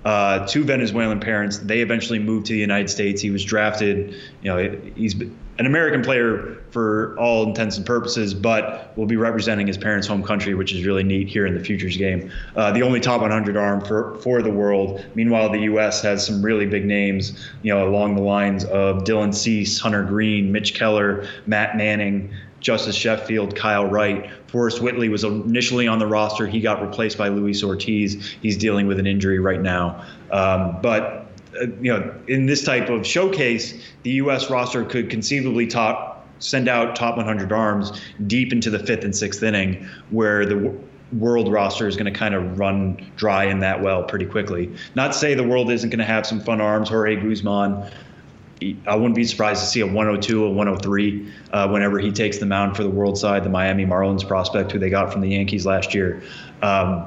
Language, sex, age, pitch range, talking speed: English, male, 20-39, 100-110 Hz, 200 wpm